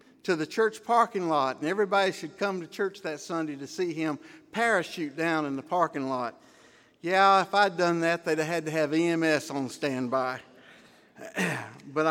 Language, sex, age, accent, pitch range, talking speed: English, male, 60-79, American, 140-190 Hz, 180 wpm